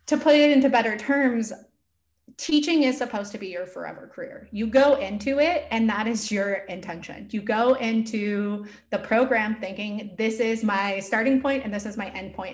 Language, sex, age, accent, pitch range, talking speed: English, female, 20-39, American, 190-255 Hz, 190 wpm